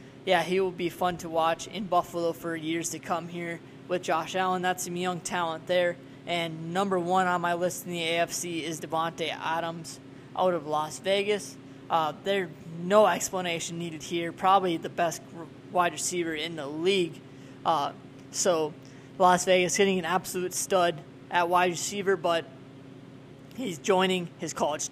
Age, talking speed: 20-39, 165 wpm